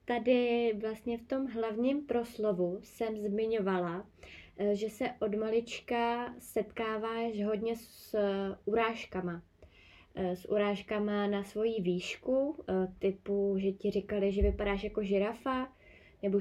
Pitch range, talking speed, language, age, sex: 195-220 Hz, 110 wpm, Czech, 20-39, female